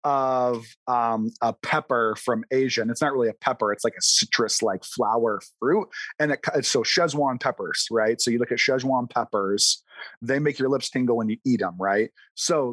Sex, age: male, 30-49